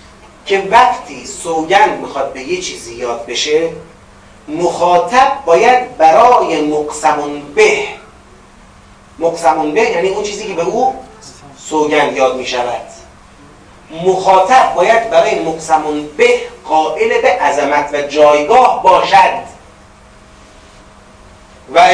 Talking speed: 100 wpm